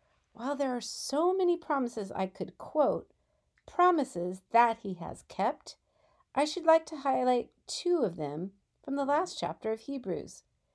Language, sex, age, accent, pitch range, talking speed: English, female, 50-69, American, 195-285 Hz, 155 wpm